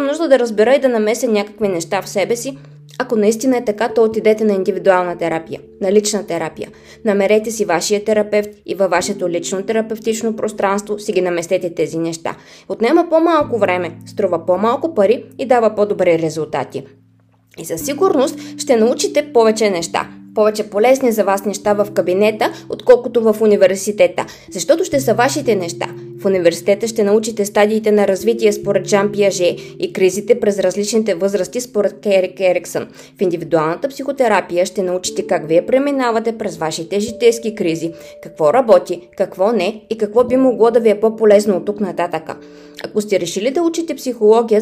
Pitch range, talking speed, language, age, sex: 180-230 Hz, 165 wpm, Bulgarian, 20-39, female